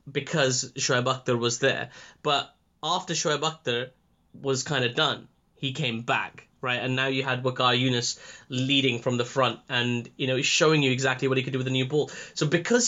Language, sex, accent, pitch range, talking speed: English, male, British, 125-150 Hz, 205 wpm